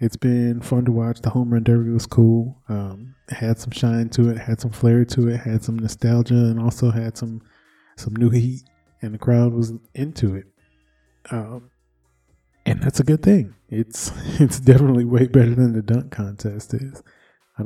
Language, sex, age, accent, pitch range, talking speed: English, male, 20-39, American, 110-125 Hz, 190 wpm